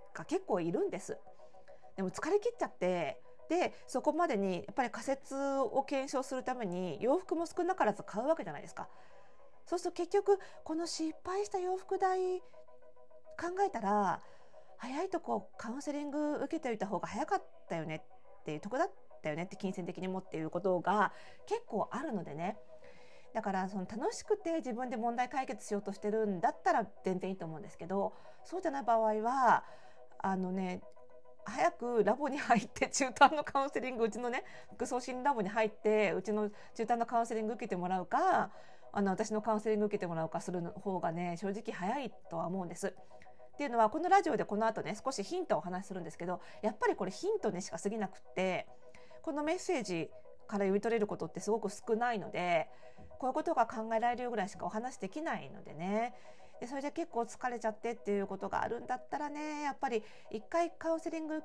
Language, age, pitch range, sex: Japanese, 40-59, 190-280 Hz, female